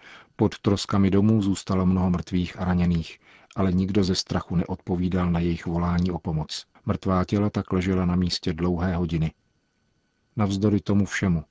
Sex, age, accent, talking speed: male, 40-59, native, 150 wpm